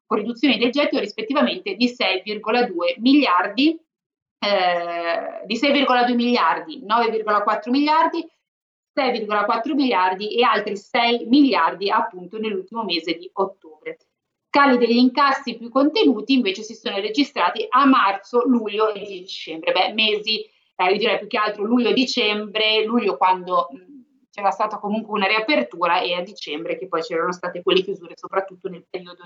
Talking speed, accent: 135 wpm, native